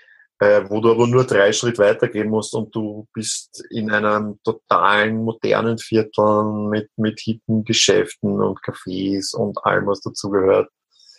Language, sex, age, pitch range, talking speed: German, male, 30-49, 105-120 Hz, 140 wpm